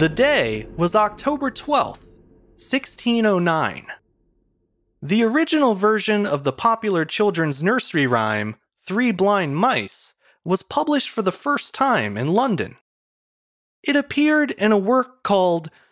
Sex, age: male, 30-49